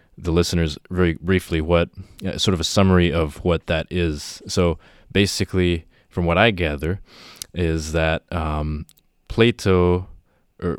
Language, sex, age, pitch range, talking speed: English, male, 20-39, 80-95 Hz, 140 wpm